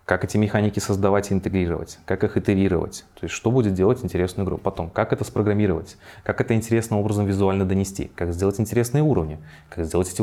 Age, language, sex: 20-39, Russian, male